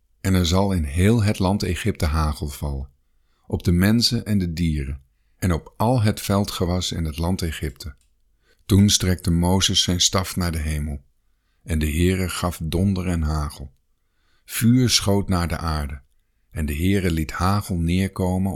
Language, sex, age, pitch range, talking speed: Dutch, male, 50-69, 80-105 Hz, 165 wpm